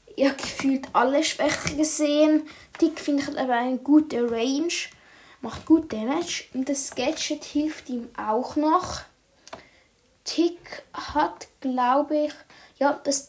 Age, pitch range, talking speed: 20-39, 245-300 Hz, 125 wpm